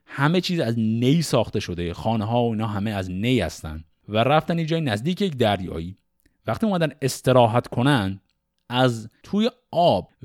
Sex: male